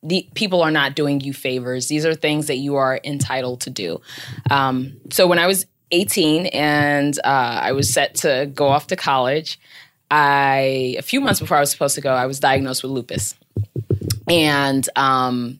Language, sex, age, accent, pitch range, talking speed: English, female, 20-39, American, 135-160 Hz, 190 wpm